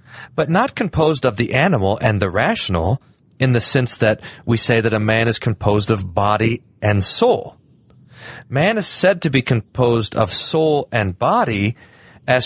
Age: 40-59